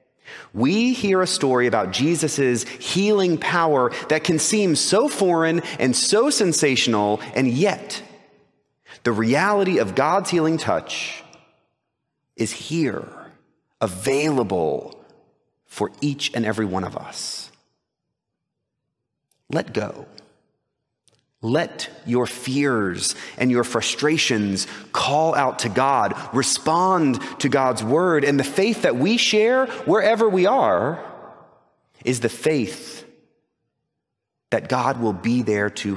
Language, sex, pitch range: English, male, 115-165 Hz